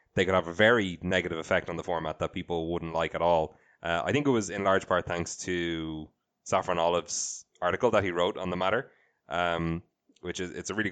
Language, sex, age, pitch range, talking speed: English, male, 20-39, 85-105 Hz, 225 wpm